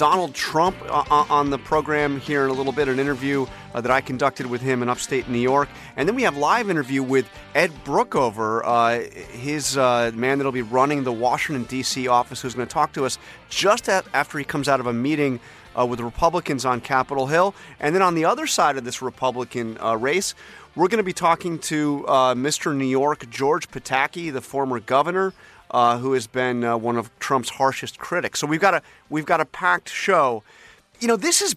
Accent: American